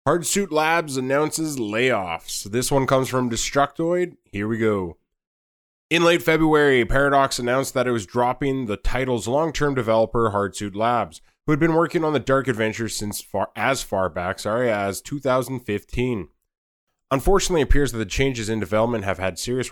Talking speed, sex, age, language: 165 wpm, male, 20-39, English